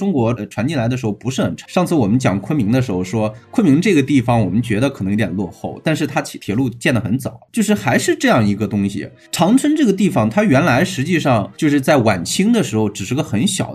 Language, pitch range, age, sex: Chinese, 110-160 Hz, 20-39, male